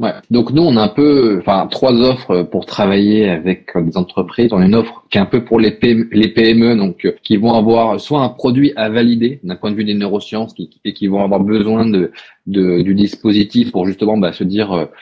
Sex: male